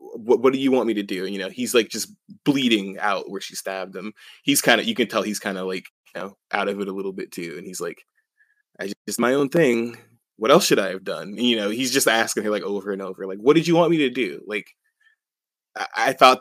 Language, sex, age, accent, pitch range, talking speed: English, male, 20-39, American, 100-140 Hz, 280 wpm